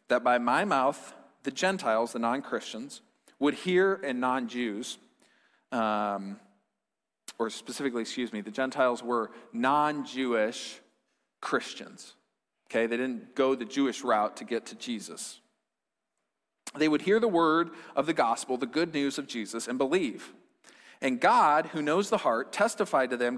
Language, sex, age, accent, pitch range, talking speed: English, male, 40-59, American, 130-195 Hz, 145 wpm